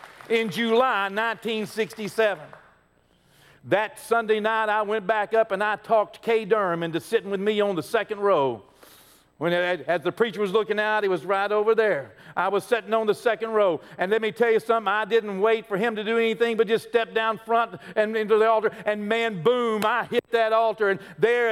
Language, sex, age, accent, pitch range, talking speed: English, male, 50-69, American, 185-235 Hz, 210 wpm